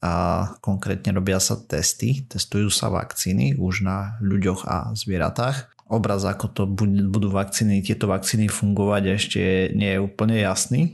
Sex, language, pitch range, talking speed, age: male, Slovak, 95-115 Hz, 145 wpm, 30-49